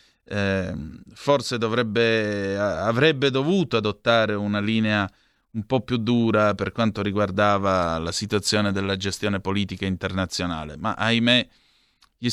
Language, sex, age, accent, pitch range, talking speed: Italian, male, 30-49, native, 100-125 Hz, 115 wpm